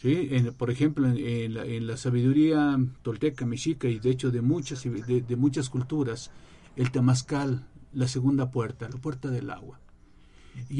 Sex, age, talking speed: male, 50-69, 165 wpm